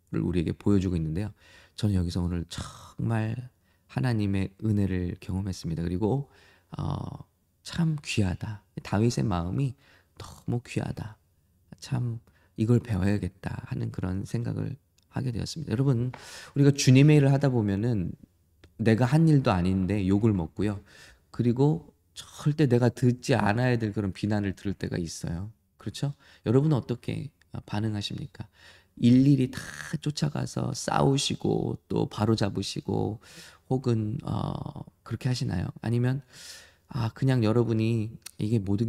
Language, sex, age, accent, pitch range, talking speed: English, male, 20-39, Korean, 95-130 Hz, 105 wpm